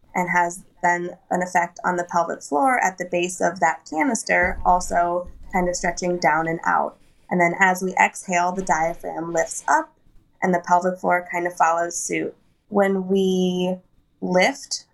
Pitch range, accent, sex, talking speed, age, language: 175-190 Hz, American, female, 170 wpm, 20-39, English